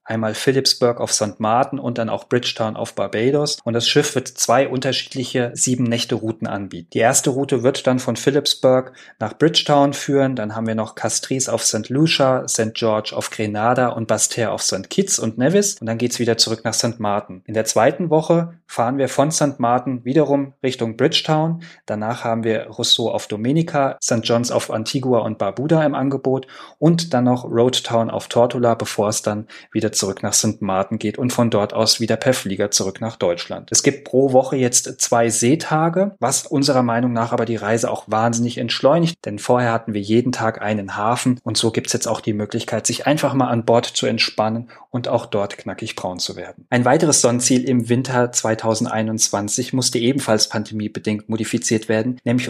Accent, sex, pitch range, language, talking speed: German, male, 110-130 Hz, German, 190 wpm